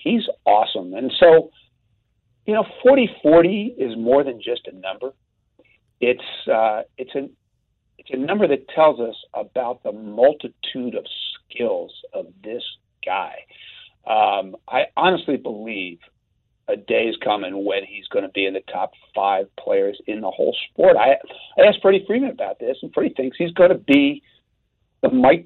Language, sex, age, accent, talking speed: English, male, 50-69, American, 155 wpm